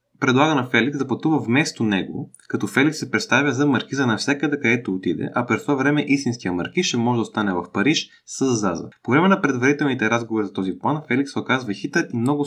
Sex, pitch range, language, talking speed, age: male, 110-145 Hz, Bulgarian, 205 wpm, 20-39